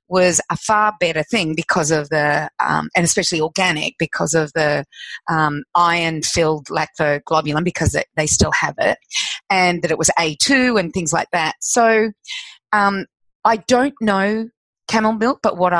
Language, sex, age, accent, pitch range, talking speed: English, female, 30-49, Australian, 160-205 Hz, 165 wpm